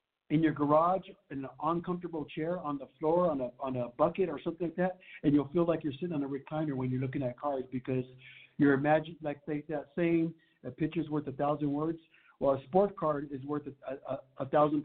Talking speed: 230 wpm